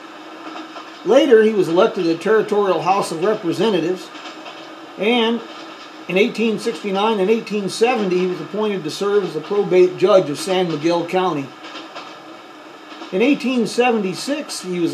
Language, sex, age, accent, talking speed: English, male, 50-69, American, 130 wpm